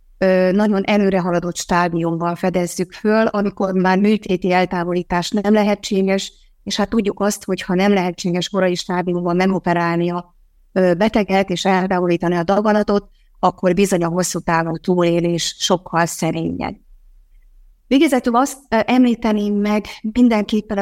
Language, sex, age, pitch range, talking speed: English, female, 30-49, 185-210 Hz, 115 wpm